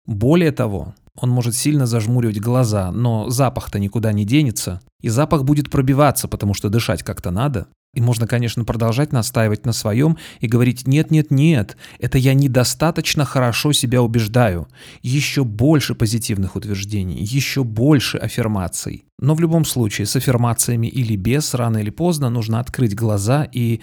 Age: 30-49